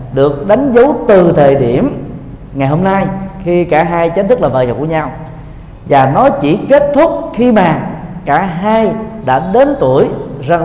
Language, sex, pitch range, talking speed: Vietnamese, male, 140-210 Hz, 180 wpm